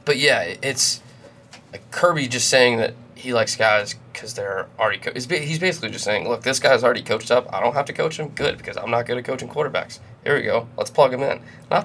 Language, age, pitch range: English, 20-39, 115-135 Hz